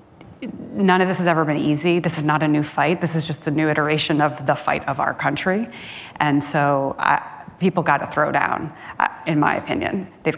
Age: 30-49